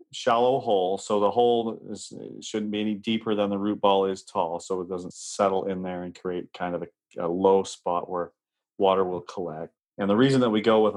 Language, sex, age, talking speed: English, male, 40-59, 220 wpm